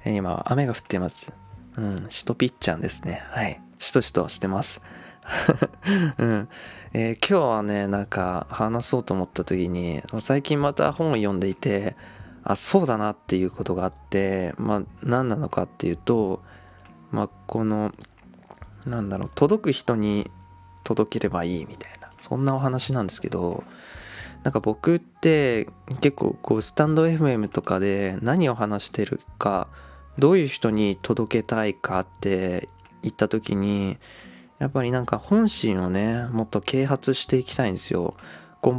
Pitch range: 95-125 Hz